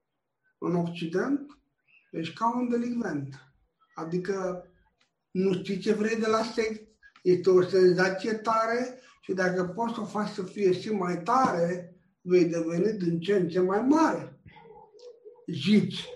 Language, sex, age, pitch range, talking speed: Romanian, male, 60-79, 170-205 Hz, 135 wpm